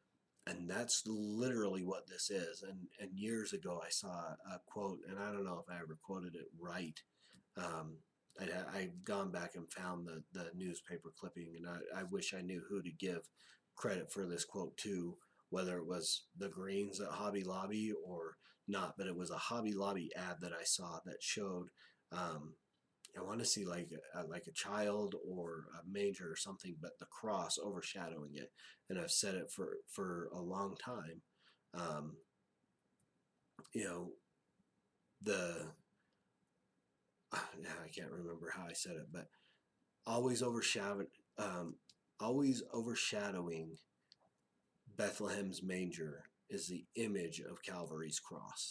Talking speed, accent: 155 wpm, American